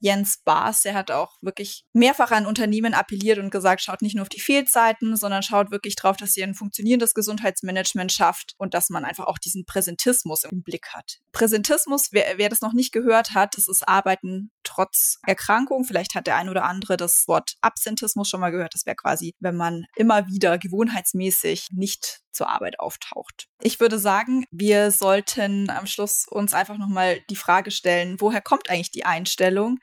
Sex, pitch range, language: female, 190-220 Hz, German